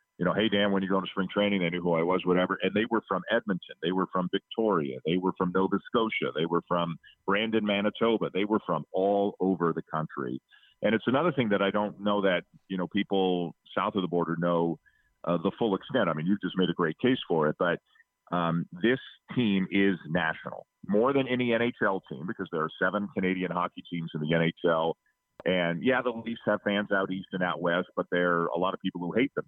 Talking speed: 235 wpm